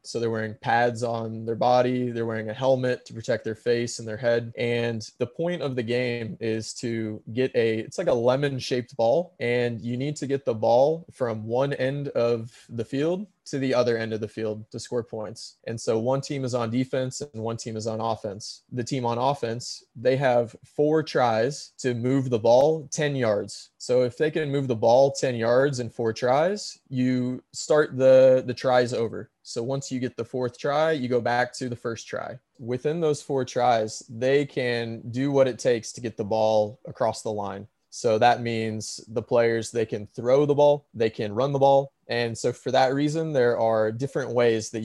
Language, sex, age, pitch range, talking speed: English, male, 20-39, 115-135 Hz, 210 wpm